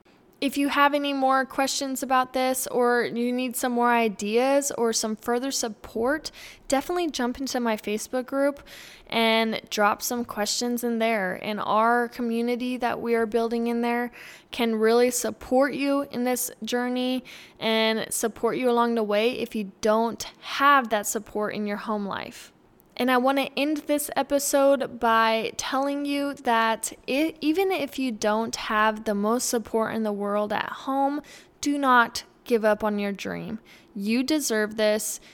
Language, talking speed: English, 160 wpm